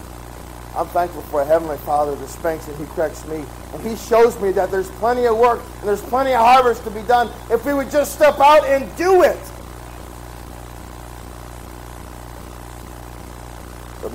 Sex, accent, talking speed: male, American, 165 wpm